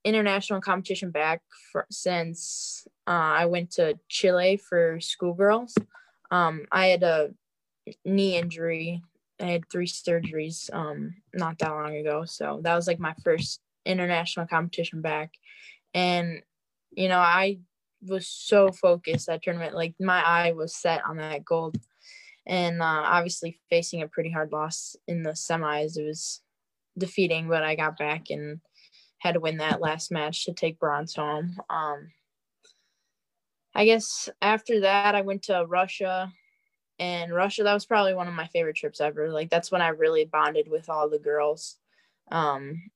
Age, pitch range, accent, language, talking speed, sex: 10-29, 155-185 Hz, American, English, 155 wpm, female